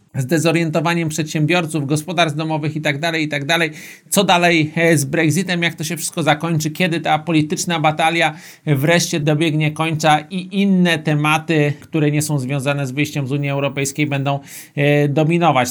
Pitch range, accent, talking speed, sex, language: 155-175 Hz, native, 155 wpm, male, Polish